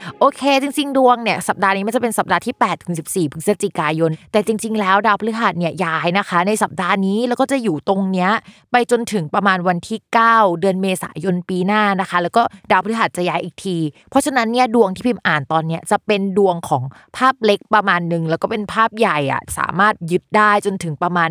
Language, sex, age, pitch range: Thai, female, 20-39, 170-215 Hz